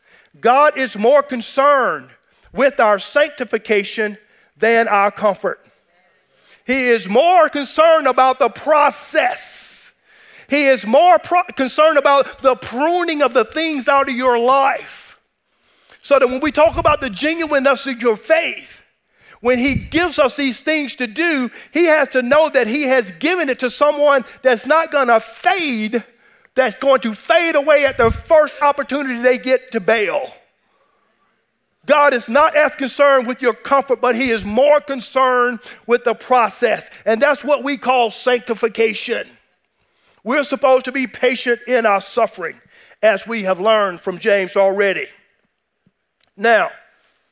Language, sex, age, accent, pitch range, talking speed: English, male, 50-69, American, 220-290 Hz, 150 wpm